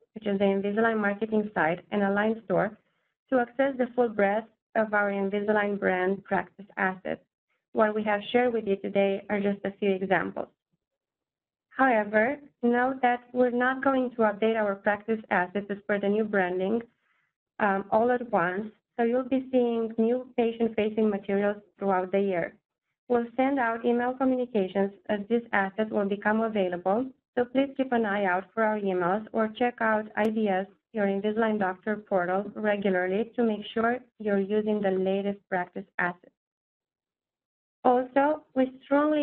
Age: 20-39